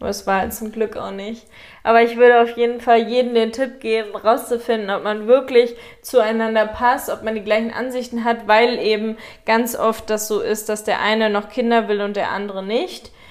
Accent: German